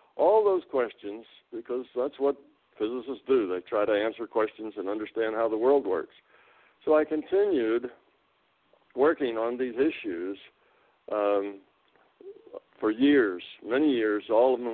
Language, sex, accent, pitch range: English, male, American, 105-145 Hz